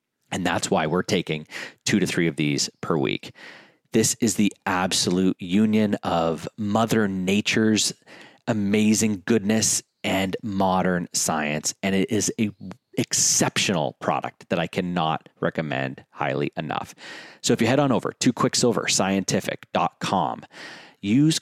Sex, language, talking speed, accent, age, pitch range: male, English, 130 wpm, American, 30-49, 90-110 Hz